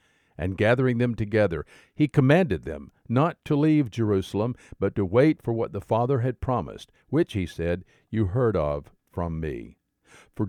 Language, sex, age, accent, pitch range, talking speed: English, male, 50-69, American, 100-135 Hz, 165 wpm